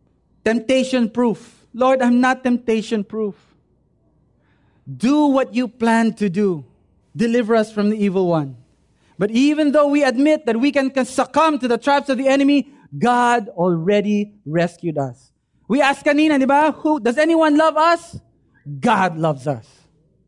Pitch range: 180-260 Hz